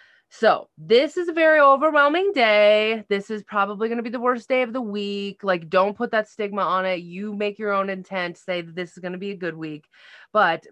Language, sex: English, female